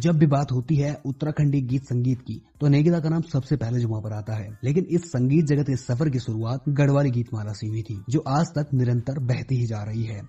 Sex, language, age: male, Hindi, 30-49